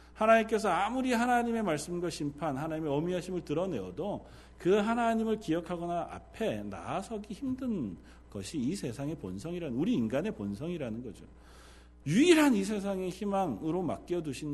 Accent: native